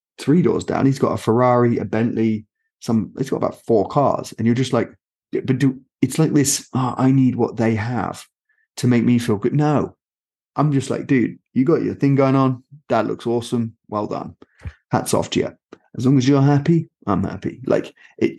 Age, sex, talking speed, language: 30-49, male, 210 wpm, English